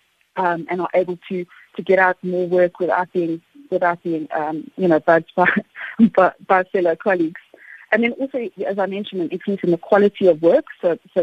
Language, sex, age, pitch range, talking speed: English, female, 30-49, 180-210 Hz, 190 wpm